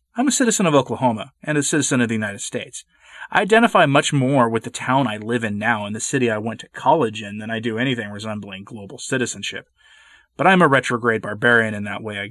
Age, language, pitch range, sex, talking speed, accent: 30-49, English, 115-140 Hz, male, 230 wpm, American